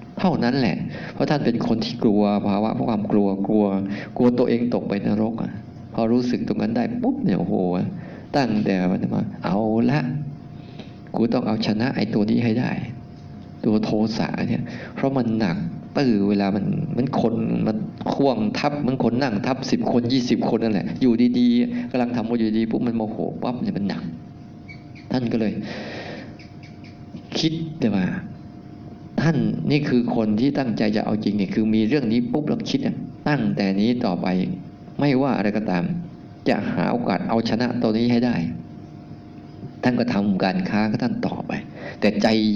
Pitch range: 100-125 Hz